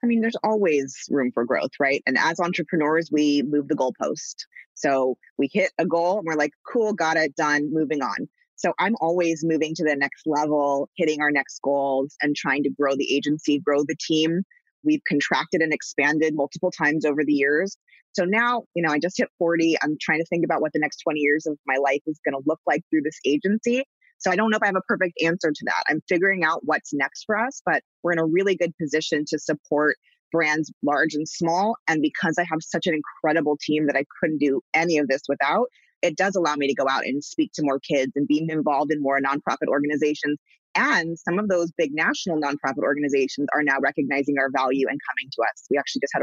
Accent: American